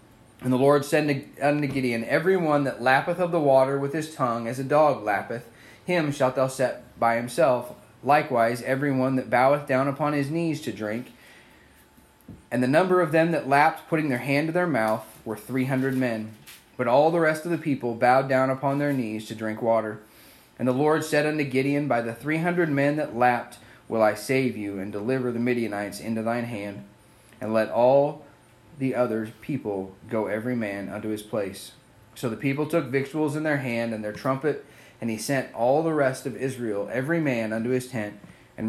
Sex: male